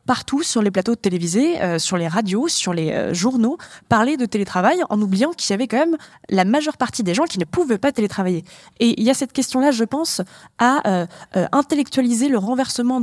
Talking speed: 220 wpm